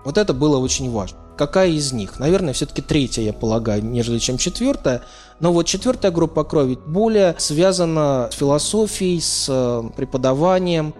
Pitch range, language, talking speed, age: 135-175 Hz, Russian, 145 wpm, 20-39